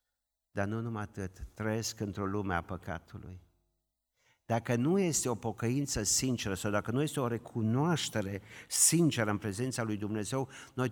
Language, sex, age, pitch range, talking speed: Romanian, male, 50-69, 105-140 Hz, 150 wpm